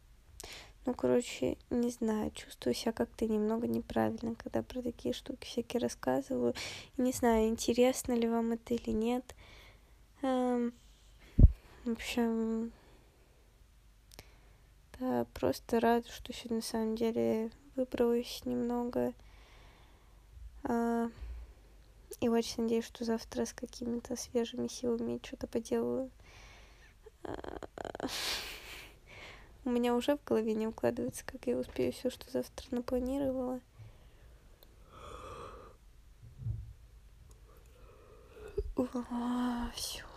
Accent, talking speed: native, 95 wpm